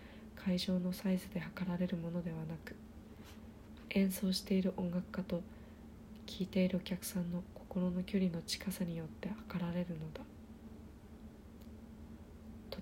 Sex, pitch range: female, 180-195 Hz